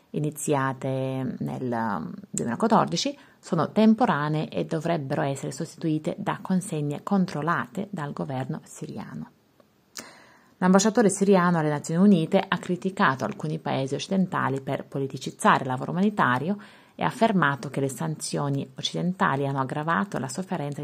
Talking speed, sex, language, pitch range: 120 wpm, female, Italian, 140-200 Hz